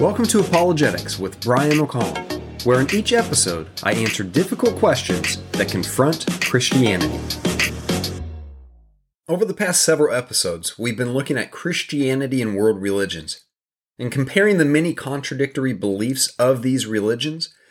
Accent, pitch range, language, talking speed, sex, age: American, 120-160 Hz, English, 130 wpm, male, 30-49